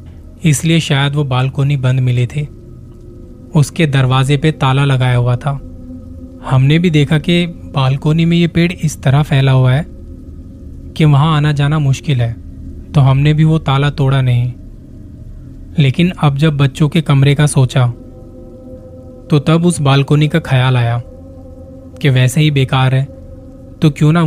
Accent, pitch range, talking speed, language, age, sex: native, 120-150 Hz, 155 wpm, Hindi, 20-39, male